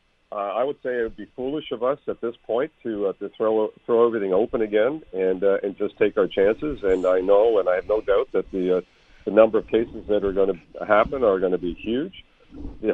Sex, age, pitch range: male, 50-69, 105-130 Hz